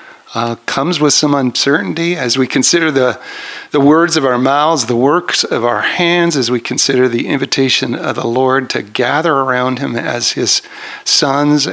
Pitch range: 120-145 Hz